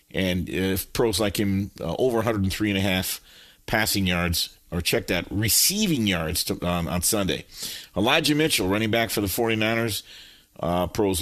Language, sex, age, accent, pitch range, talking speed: English, male, 50-69, American, 95-125 Hz, 150 wpm